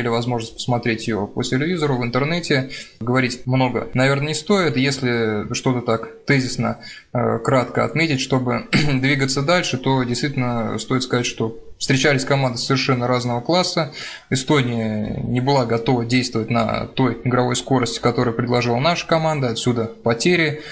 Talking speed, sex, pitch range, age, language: 140 wpm, male, 120-135 Hz, 20-39, Russian